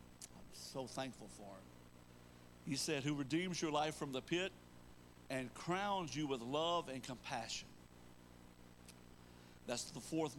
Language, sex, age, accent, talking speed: English, male, 60-79, American, 135 wpm